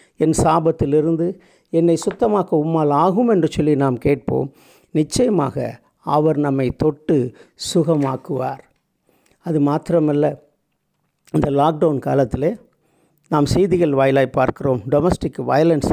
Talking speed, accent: 100 wpm, native